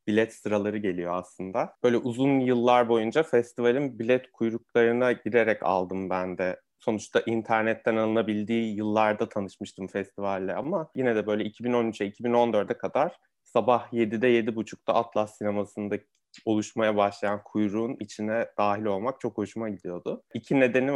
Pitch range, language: 105-125 Hz, Turkish